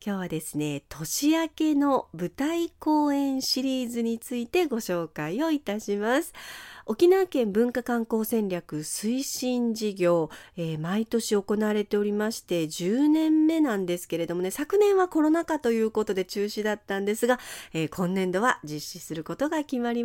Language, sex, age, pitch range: Japanese, female, 40-59, 195-290 Hz